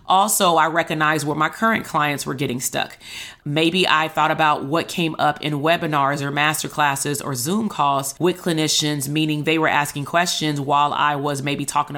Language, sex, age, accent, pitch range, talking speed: English, female, 30-49, American, 145-170 Hz, 180 wpm